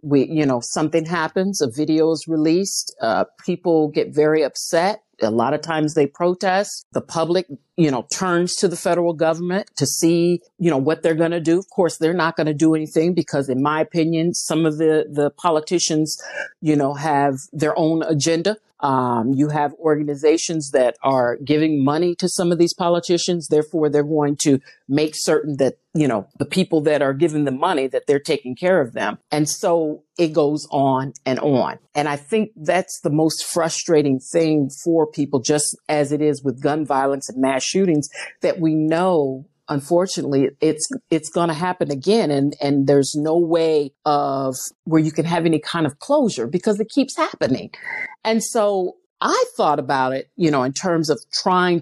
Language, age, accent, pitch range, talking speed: English, 50-69, American, 145-170 Hz, 190 wpm